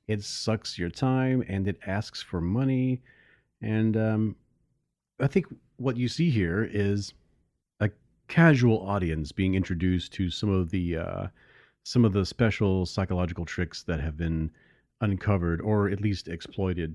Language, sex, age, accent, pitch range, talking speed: English, male, 40-59, American, 85-110 Hz, 150 wpm